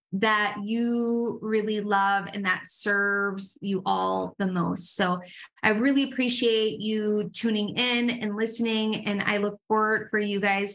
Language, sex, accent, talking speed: English, female, American, 150 wpm